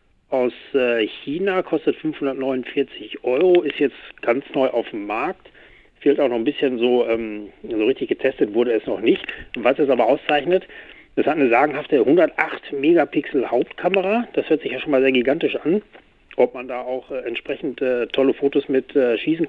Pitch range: 125-200 Hz